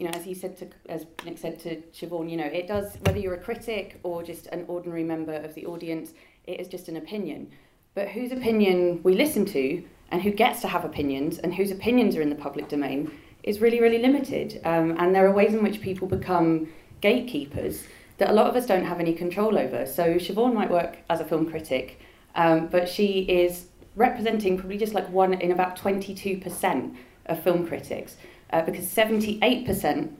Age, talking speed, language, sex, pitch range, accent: 30-49, 205 wpm, English, female, 165-195 Hz, British